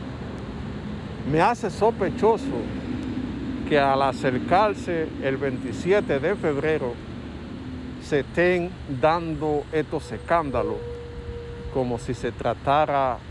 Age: 50-69